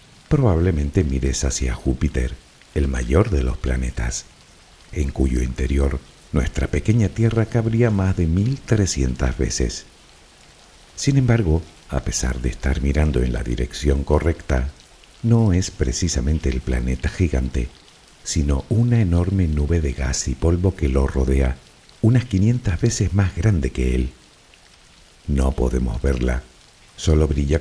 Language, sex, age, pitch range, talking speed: Spanish, male, 60-79, 65-90 Hz, 130 wpm